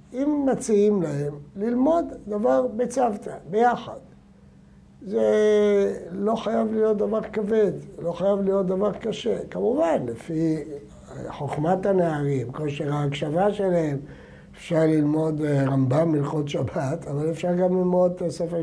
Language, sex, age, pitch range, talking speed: Hebrew, male, 60-79, 155-205 Hz, 115 wpm